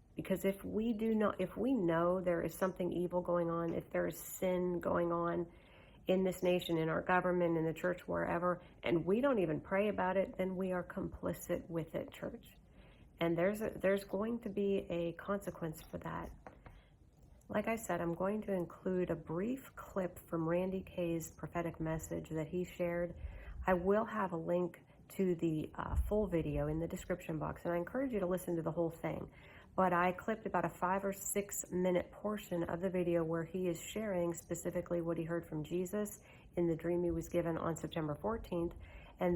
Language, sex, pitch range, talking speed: English, female, 170-190 Hz, 200 wpm